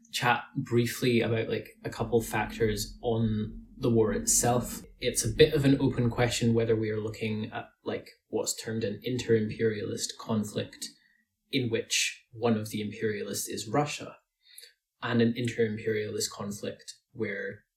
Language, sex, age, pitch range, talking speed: English, male, 20-39, 110-120 Hz, 140 wpm